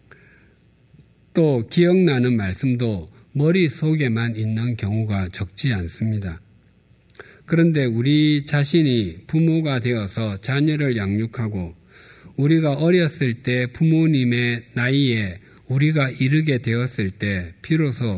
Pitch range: 110-150 Hz